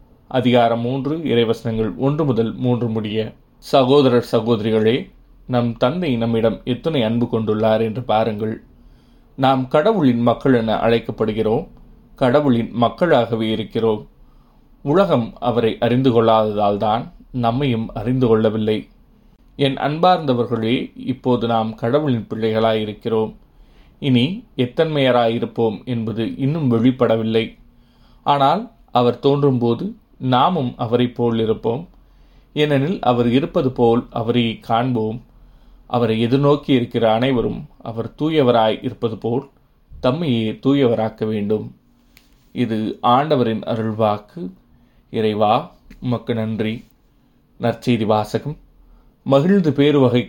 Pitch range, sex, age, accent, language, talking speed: 110-130 Hz, male, 20-39, native, Tamil, 90 wpm